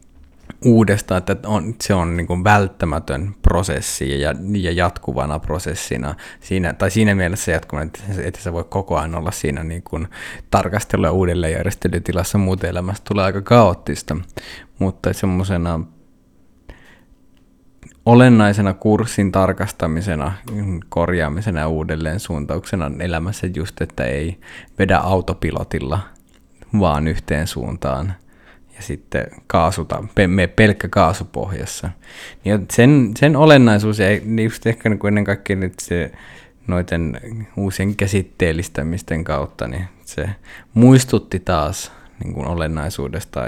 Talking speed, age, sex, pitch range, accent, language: 105 wpm, 20-39, male, 80-100 Hz, native, Finnish